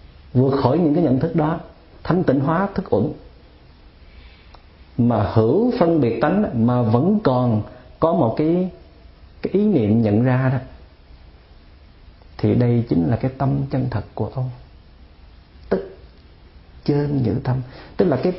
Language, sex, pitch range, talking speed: Vietnamese, male, 105-145 Hz, 150 wpm